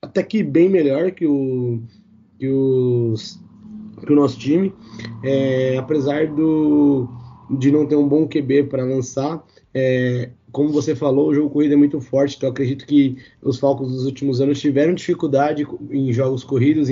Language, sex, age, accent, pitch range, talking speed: Portuguese, male, 20-39, Brazilian, 130-155 Hz, 165 wpm